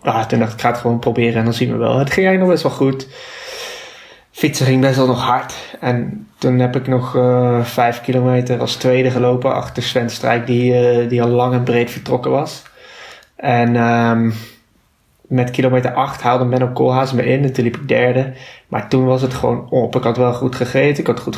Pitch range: 115-125 Hz